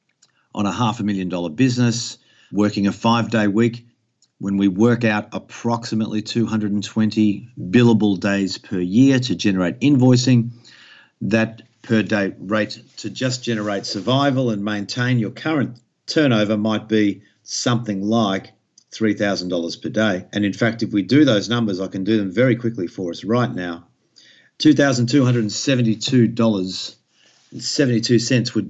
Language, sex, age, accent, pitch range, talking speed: English, male, 50-69, Australian, 95-115 Hz, 135 wpm